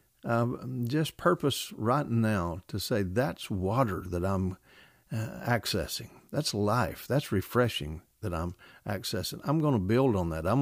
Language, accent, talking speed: English, American, 155 wpm